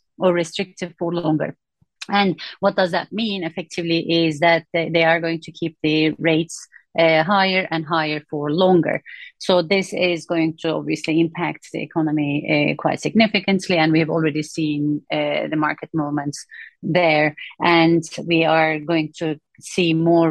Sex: female